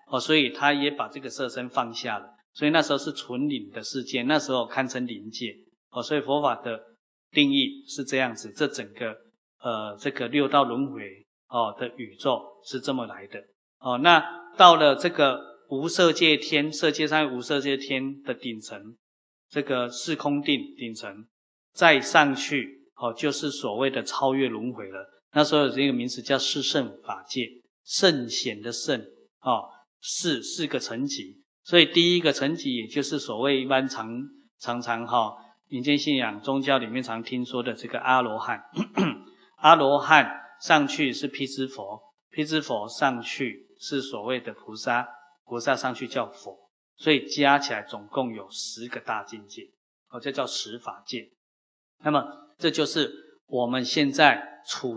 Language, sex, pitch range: Chinese, male, 120-150 Hz